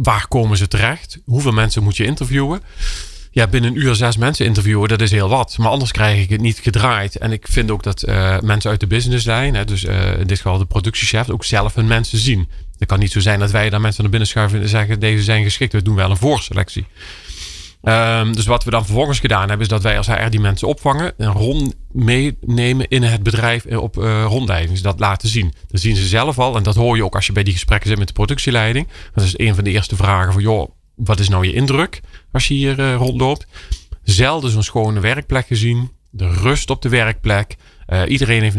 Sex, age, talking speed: male, 40-59, 230 wpm